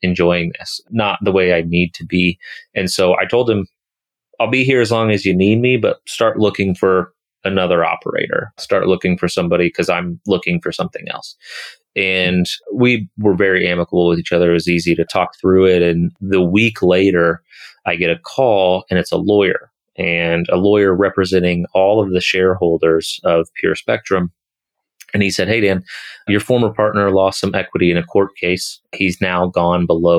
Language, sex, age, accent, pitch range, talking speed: English, male, 30-49, American, 85-95 Hz, 190 wpm